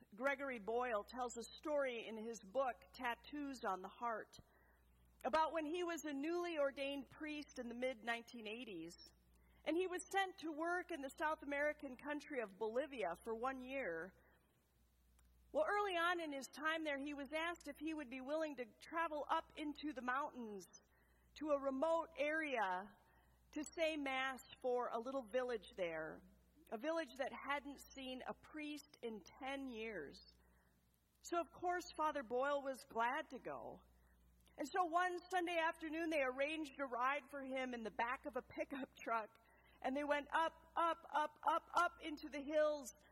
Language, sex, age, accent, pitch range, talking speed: English, female, 50-69, American, 230-305 Hz, 165 wpm